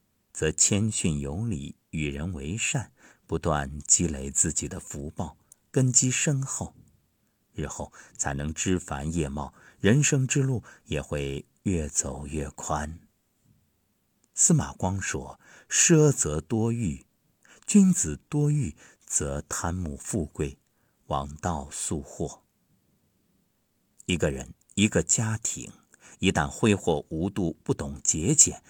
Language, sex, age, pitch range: Chinese, male, 50-69, 75-115 Hz